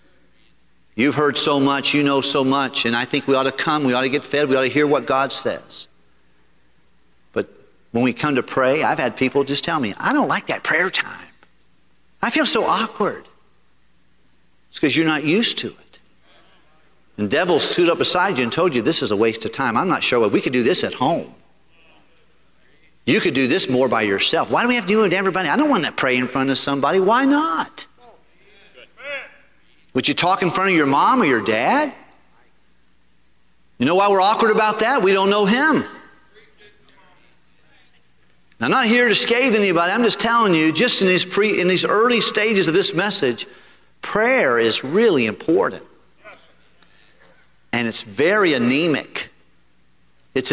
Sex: male